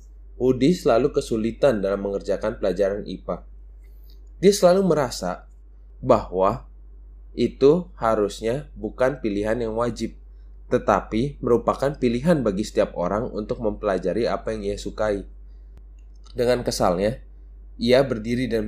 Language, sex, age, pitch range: Indonesian, male, 20-39, 100-135 Hz